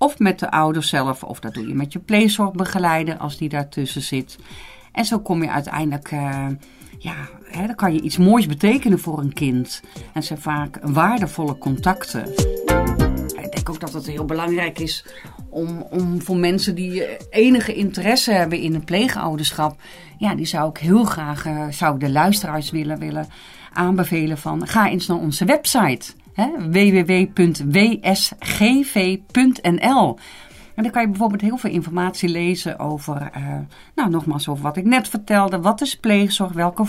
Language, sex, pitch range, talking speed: Dutch, female, 155-205 Hz, 160 wpm